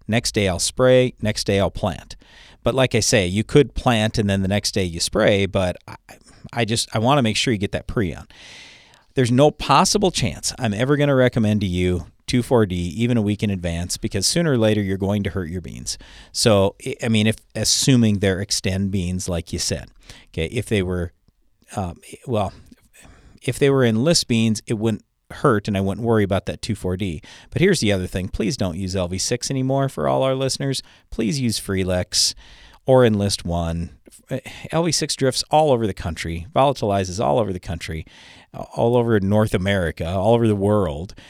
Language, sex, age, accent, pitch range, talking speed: English, male, 40-59, American, 95-120 Hz, 195 wpm